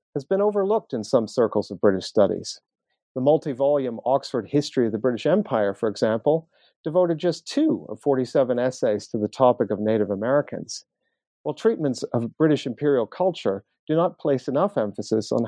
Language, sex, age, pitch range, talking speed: English, male, 40-59, 115-150 Hz, 165 wpm